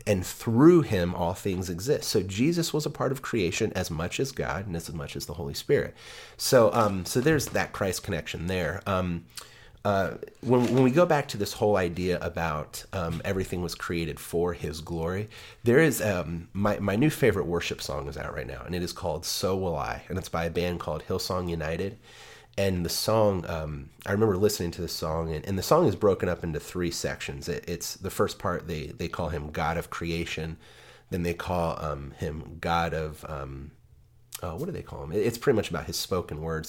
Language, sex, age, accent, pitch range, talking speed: English, male, 30-49, American, 80-100 Hz, 215 wpm